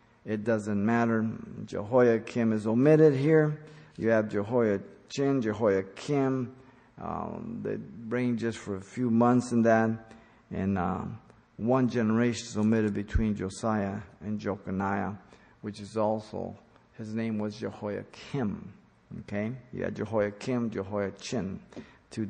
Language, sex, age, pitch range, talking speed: English, male, 50-69, 110-135 Hz, 120 wpm